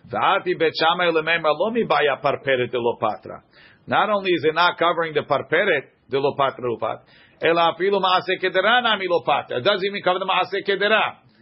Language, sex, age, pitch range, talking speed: English, male, 50-69, 140-185 Hz, 95 wpm